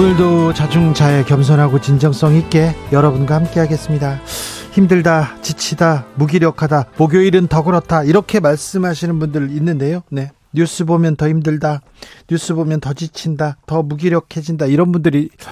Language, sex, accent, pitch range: Korean, male, native, 140-175 Hz